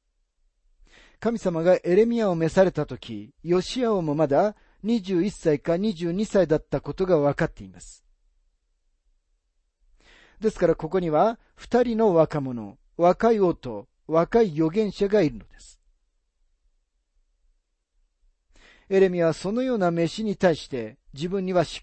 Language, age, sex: Japanese, 40-59, male